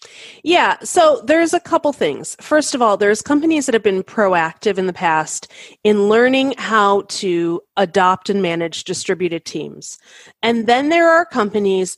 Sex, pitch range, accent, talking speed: female, 195-255 Hz, American, 160 wpm